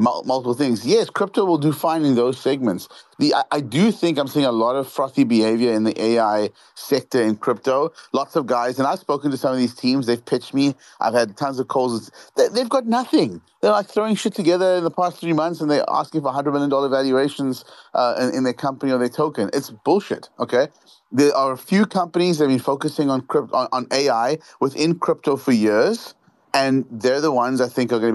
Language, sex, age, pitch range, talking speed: English, male, 30-49, 115-145 Hz, 225 wpm